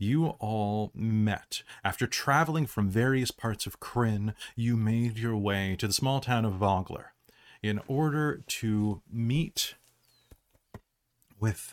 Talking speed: 130 wpm